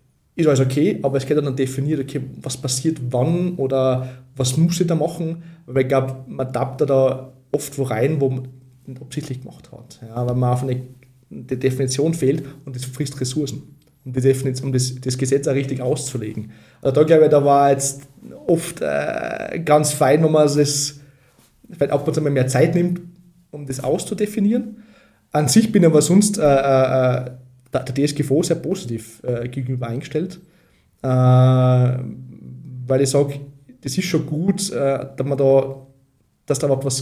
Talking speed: 175 wpm